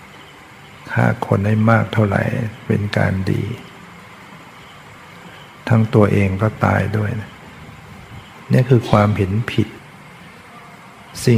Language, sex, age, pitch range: Thai, male, 60-79, 105-120 Hz